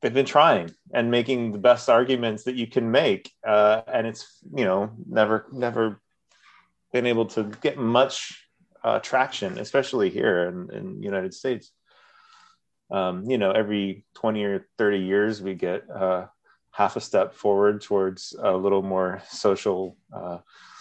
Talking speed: 150 wpm